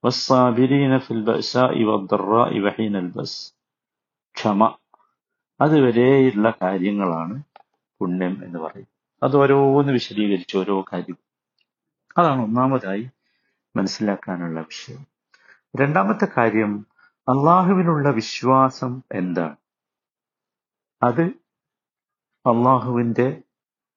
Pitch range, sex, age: 105-150 Hz, male, 50-69